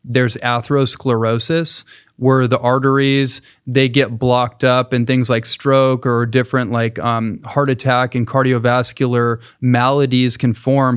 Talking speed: 130 wpm